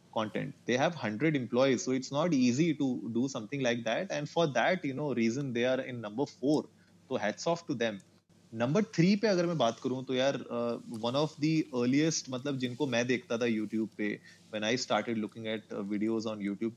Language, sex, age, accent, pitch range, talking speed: Hindi, male, 30-49, native, 120-160 Hz, 210 wpm